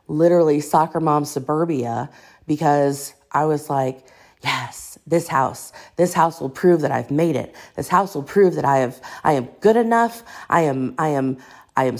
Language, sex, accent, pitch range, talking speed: English, female, American, 145-205 Hz, 180 wpm